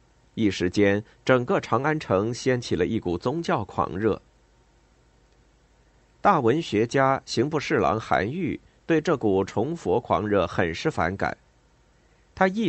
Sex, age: male, 50-69